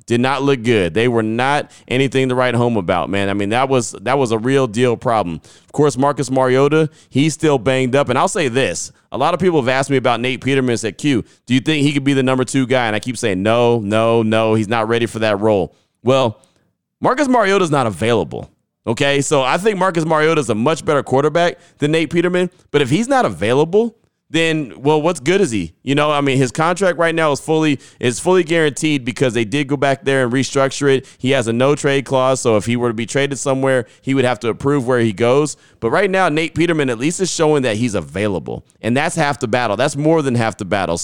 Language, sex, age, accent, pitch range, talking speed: English, male, 30-49, American, 120-155 Hz, 245 wpm